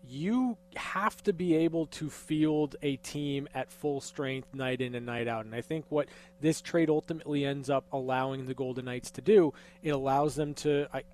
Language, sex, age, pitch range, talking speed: English, male, 20-39, 135-160 Hz, 200 wpm